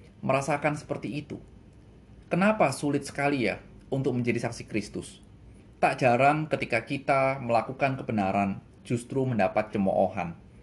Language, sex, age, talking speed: Indonesian, male, 20-39, 115 wpm